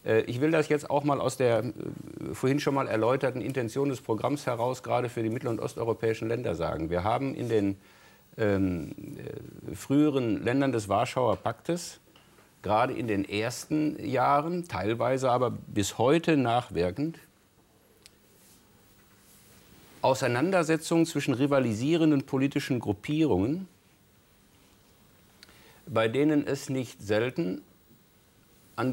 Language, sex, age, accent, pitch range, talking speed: German, male, 50-69, German, 115-165 Hz, 115 wpm